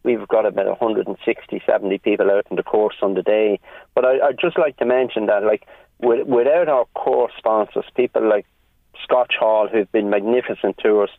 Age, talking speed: 40-59, 195 wpm